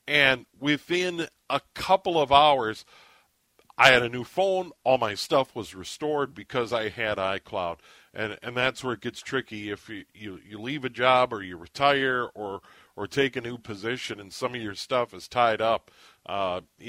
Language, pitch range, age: English, 120-145 Hz, 50-69